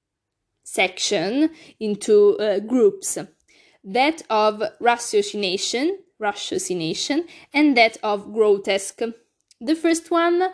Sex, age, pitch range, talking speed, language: female, 20-39, 205-275 Hz, 85 wpm, Italian